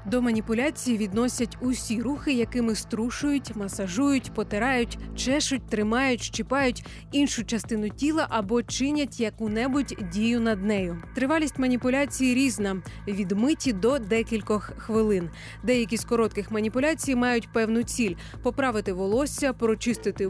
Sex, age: female, 30-49